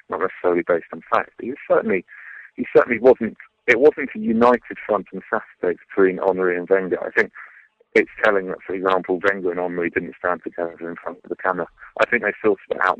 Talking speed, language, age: 210 wpm, English, 40-59